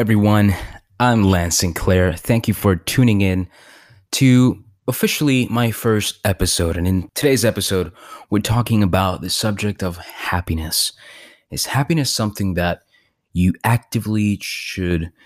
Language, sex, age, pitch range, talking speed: English, male, 20-39, 90-105 Hz, 125 wpm